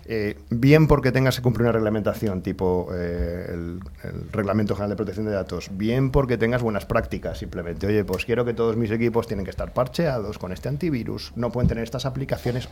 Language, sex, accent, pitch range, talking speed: Spanish, male, Spanish, 100-130 Hz, 205 wpm